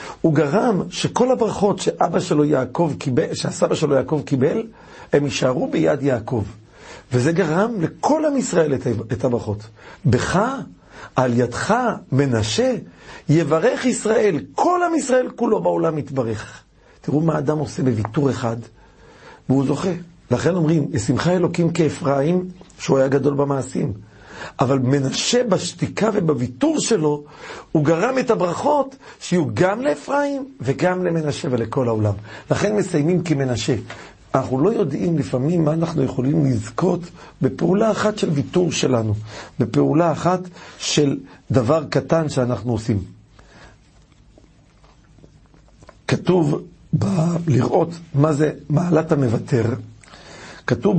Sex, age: male, 50-69